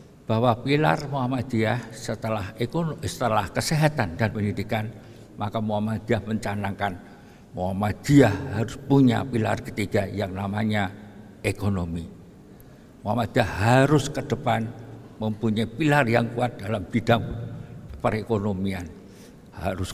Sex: male